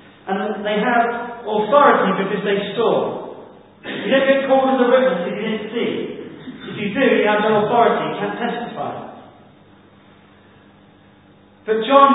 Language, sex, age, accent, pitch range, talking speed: English, male, 10-29, British, 180-235 Hz, 150 wpm